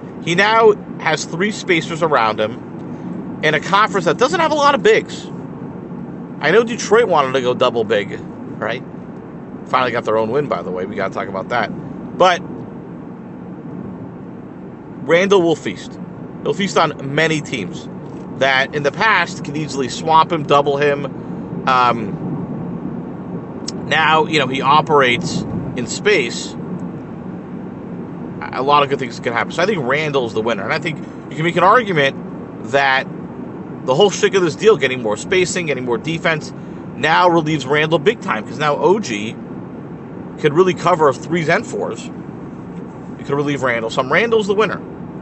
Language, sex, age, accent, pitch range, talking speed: English, male, 40-59, American, 140-200 Hz, 165 wpm